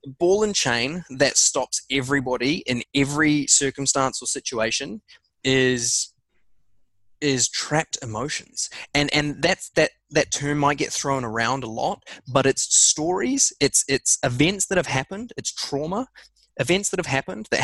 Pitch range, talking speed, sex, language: 125-155 Hz, 145 wpm, male, English